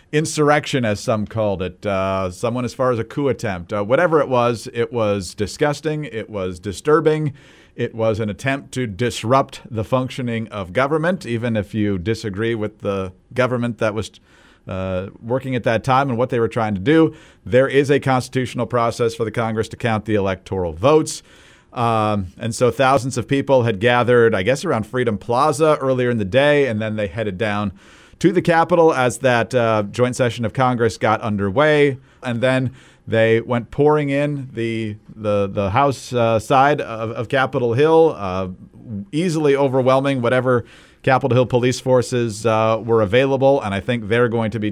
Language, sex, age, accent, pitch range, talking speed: English, male, 50-69, American, 110-135 Hz, 180 wpm